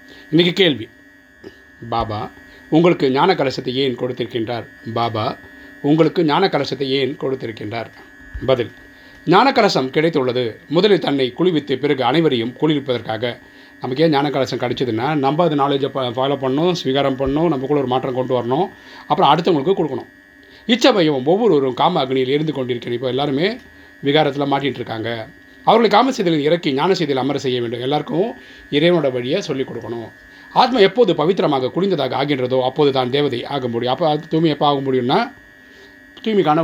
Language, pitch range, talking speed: Tamil, 115-150 Hz, 135 wpm